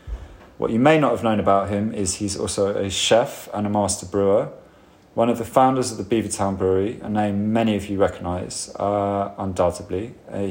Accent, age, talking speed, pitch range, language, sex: British, 30-49, 200 wpm, 90-105 Hz, English, male